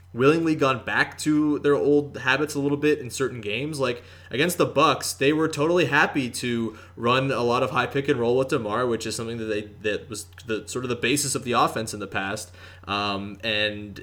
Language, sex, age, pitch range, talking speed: English, male, 20-39, 105-135 Hz, 220 wpm